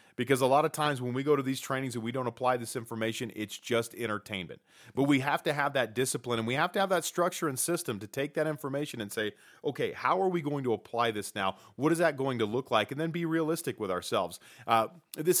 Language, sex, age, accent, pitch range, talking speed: English, male, 30-49, American, 120-160 Hz, 255 wpm